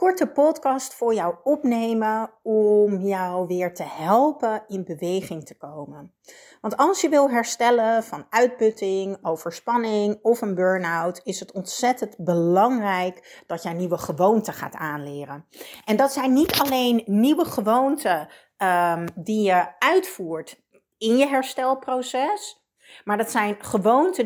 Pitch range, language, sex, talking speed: 190-265 Hz, Dutch, female, 130 wpm